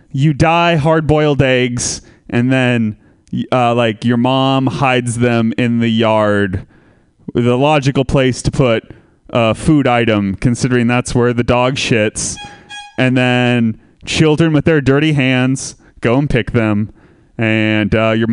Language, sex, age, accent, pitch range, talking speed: English, male, 20-39, American, 120-160 Hz, 140 wpm